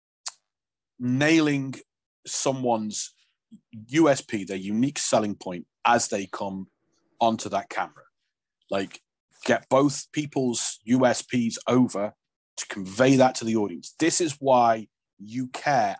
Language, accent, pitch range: English, British, 100-145 Hz